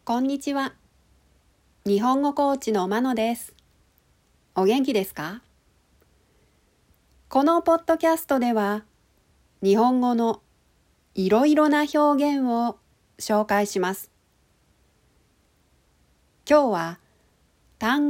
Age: 40-59